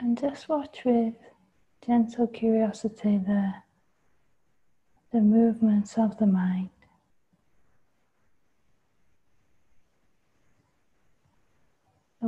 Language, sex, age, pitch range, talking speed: English, female, 30-49, 210-235 Hz, 65 wpm